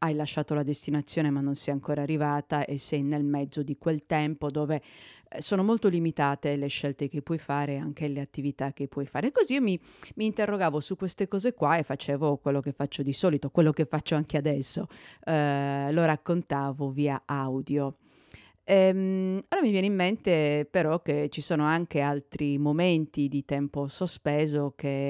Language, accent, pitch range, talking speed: Italian, native, 145-160 Hz, 175 wpm